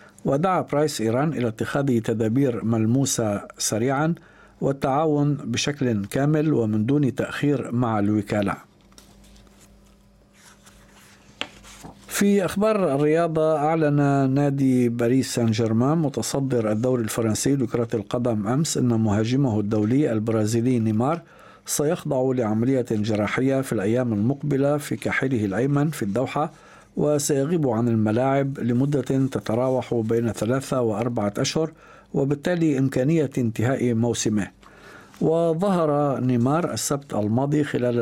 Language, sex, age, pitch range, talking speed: Arabic, male, 50-69, 115-145 Hz, 100 wpm